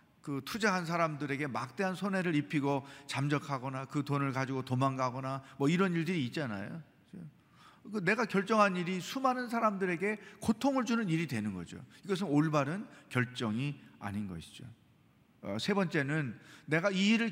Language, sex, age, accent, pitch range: Korean, male, 40-59, native, 135-195 Hz